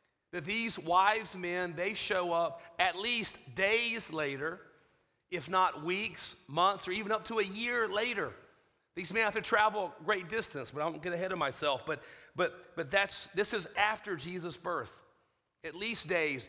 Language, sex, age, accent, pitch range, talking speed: English, male, 40-59, American, 160-210 Hz, 180 wpm